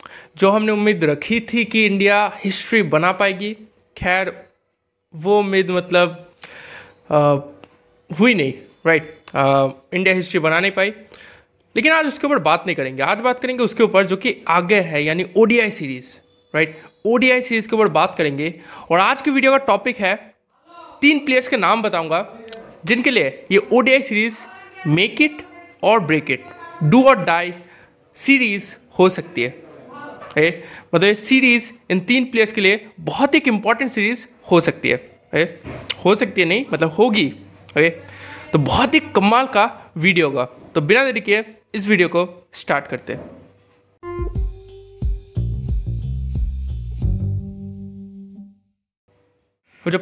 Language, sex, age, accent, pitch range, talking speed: Hindi, male, 20-39, native, 155-230 Hz, 140 wpm